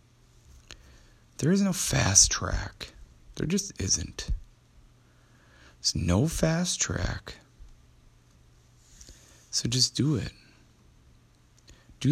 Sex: male